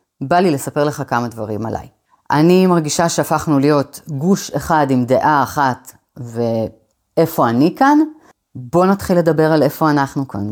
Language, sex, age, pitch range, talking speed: Hebrew, female, 30-49, 140-225 Hz, 150 wpm